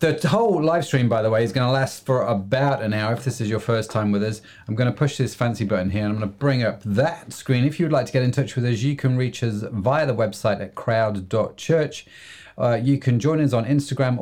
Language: English